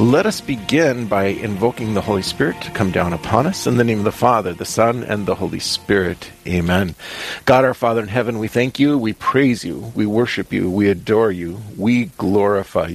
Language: English